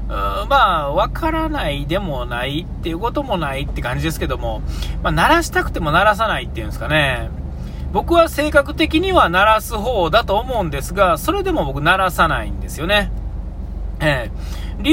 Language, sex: Japanese, male